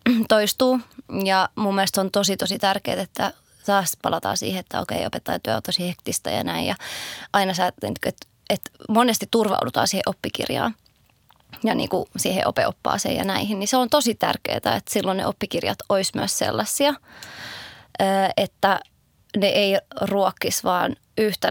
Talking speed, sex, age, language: 150 wpm, female, 20-39, Finnish